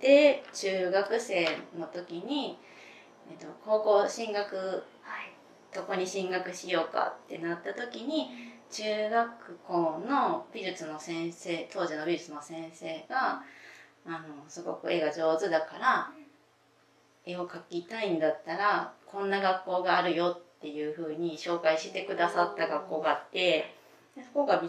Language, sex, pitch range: Japanese, female, 160-235 Hz